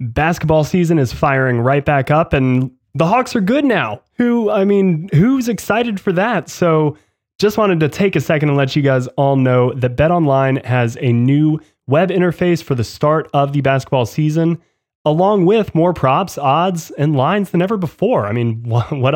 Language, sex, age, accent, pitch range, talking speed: English, male, 20-39, American, 125-160 Hz, 190 wpm